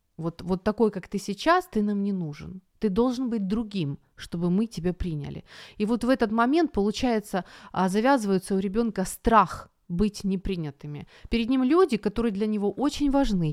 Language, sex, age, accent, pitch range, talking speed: Ukrainian, female, 30-49, native, 175-230 Hz, 170 wpm